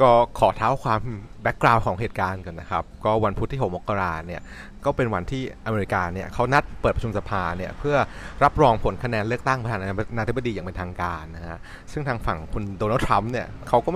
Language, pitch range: Thai, 100-130 Hz